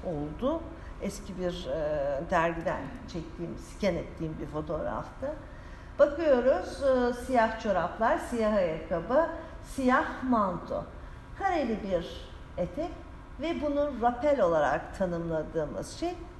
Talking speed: 100 wpm